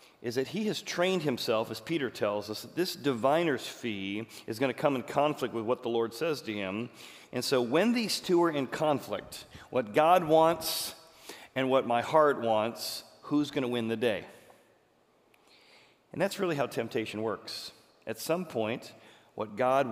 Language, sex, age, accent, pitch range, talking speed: English, male, 40-59, American, 105-145 Hz, 180 wpm